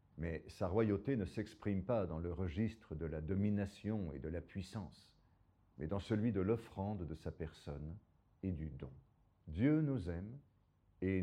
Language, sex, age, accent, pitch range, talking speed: French, male, 50-69, French, 90-120 Hz, 165 wpm